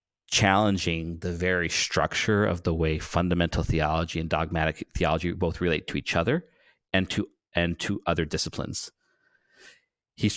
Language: English